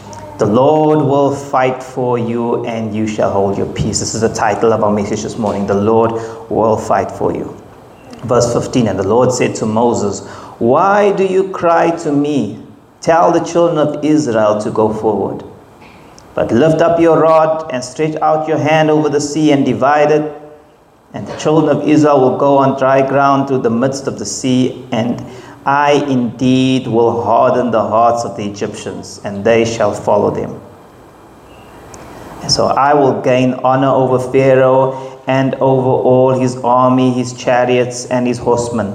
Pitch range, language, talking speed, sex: 115-140 Hz, English, 175 wpm, male